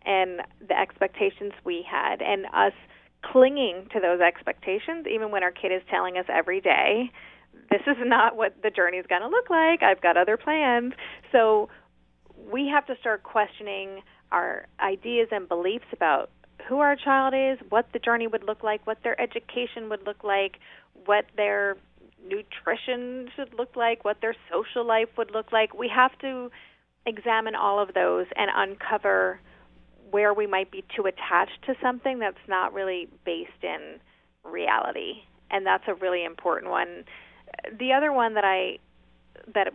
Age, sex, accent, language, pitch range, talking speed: 30-49, female, American, English, 190-255 Hz, 165 wpm